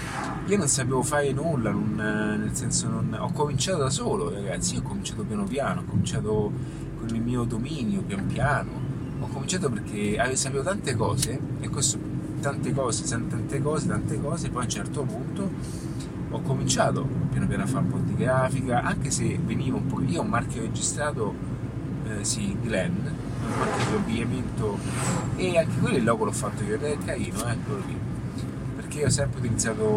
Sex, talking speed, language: male, 180 wpm, Italian